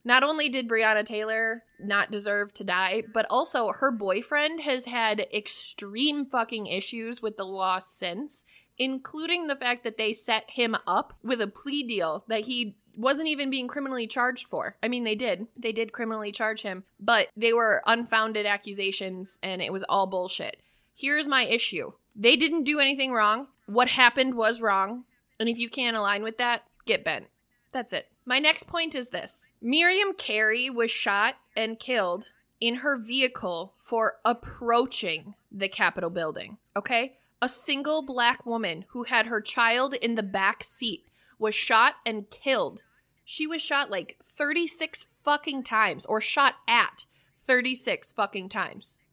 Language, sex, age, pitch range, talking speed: English, female, 20-39, 215-260 Hz, 160 wpm